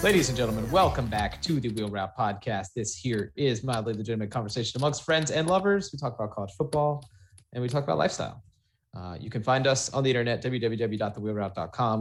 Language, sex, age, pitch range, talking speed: English, male, 30-49, 100-130 Hz, 195 wpm